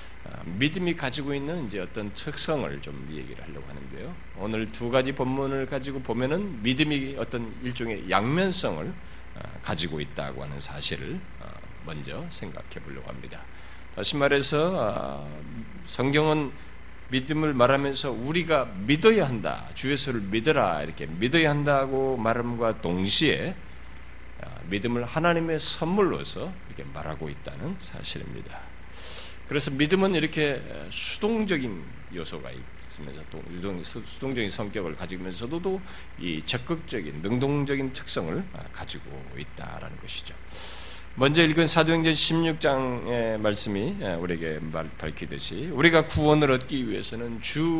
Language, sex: Korean, male